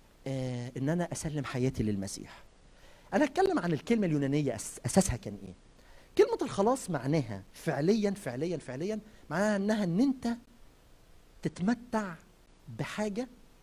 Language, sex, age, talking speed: Arabic, male, 50-69, 110 wpm